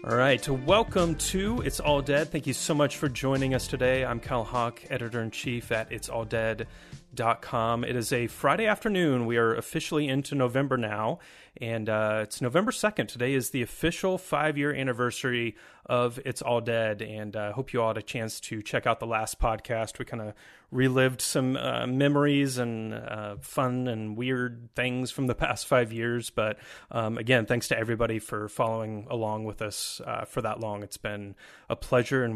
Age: 30-49